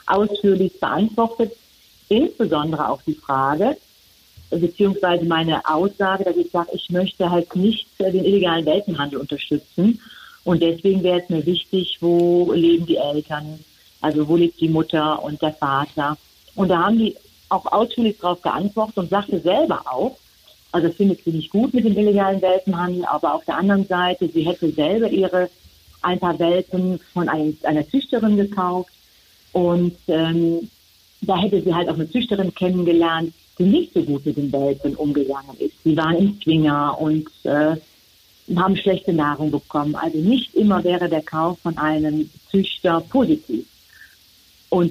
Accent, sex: German, female